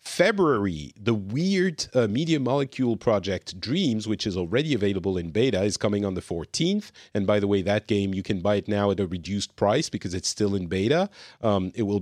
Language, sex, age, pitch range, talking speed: English, male, 40-59, 95-115 Hz, 210 wpm